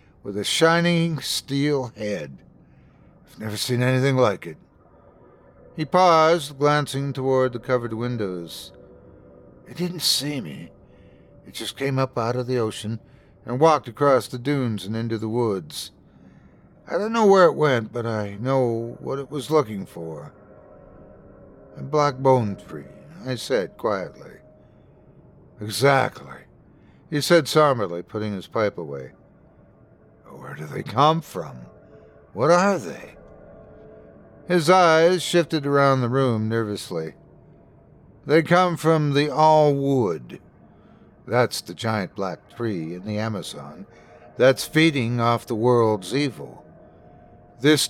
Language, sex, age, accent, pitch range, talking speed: English, male, 60-79, American, 110-150 Hz, 130 wpm